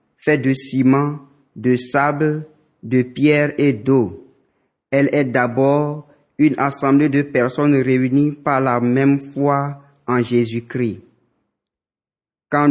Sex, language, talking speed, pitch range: male, French, 115 wpm, 125-140 Hz